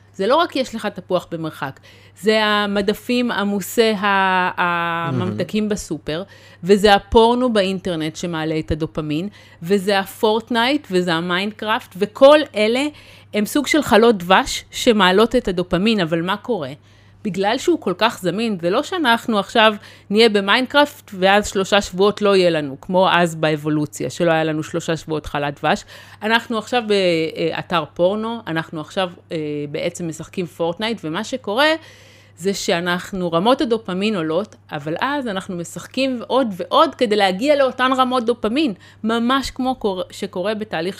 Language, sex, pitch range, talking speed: Hebrew, female, 175-230 Hz, 135 wpm